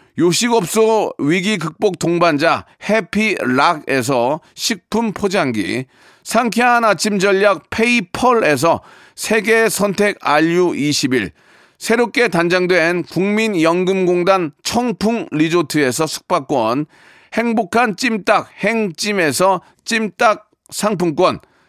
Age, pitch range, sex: 40-59, 175-225 Hz, male